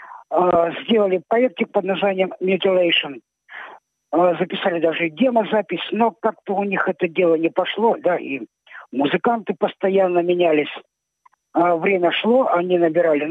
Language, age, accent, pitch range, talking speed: Russian, 50-69, native, 170-215 Hz, 115 wpm